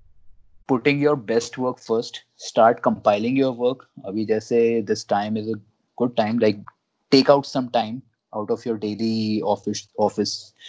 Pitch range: 105-120 Hz